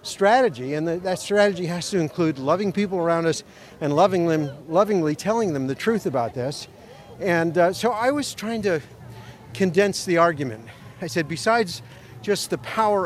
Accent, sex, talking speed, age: American, male, 160 wpm, 50-69